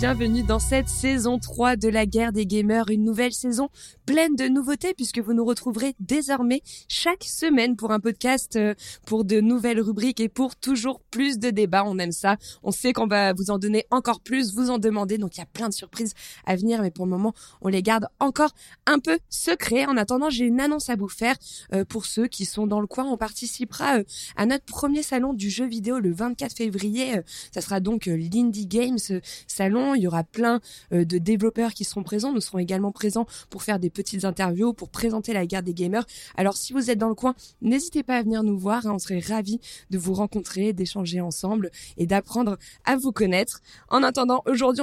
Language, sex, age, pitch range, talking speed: French, female, 20-39, 195-245 Hz, 210 wpm